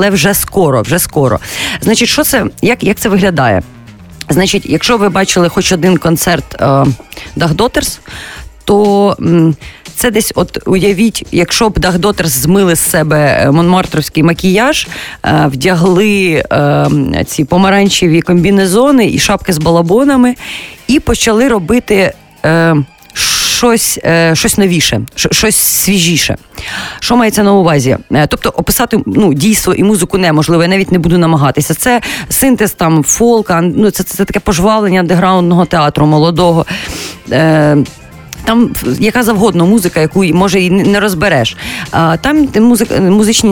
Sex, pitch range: female, 160-205 Hz